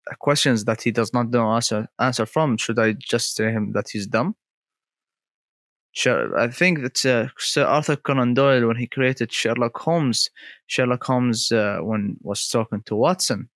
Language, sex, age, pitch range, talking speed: Arabic, male, 20-39, 115-145 Hz, 175 wpm